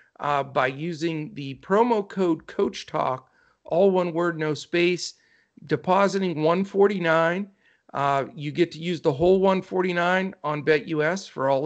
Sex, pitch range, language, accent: male, 150-185 Hz, English, American